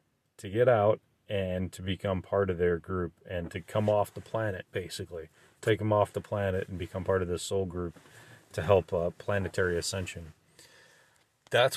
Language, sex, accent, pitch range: English, male, American, 95-120 Hz